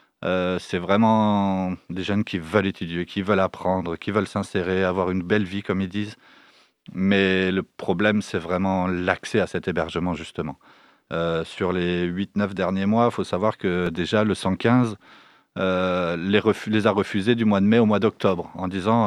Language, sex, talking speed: French, male, 185 wpm